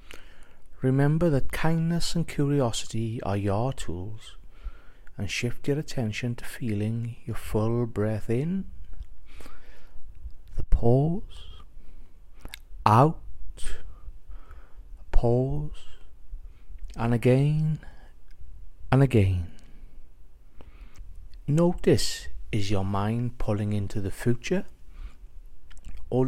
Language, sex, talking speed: English, male, 80 wpm